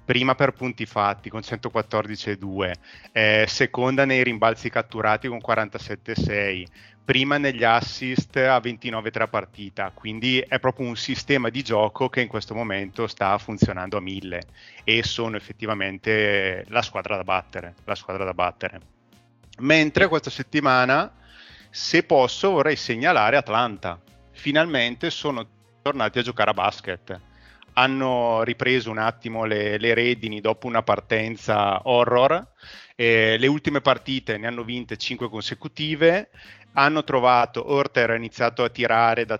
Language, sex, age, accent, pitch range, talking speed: Italian, male, 30-49, native, 105-125 Hz, 135 wpm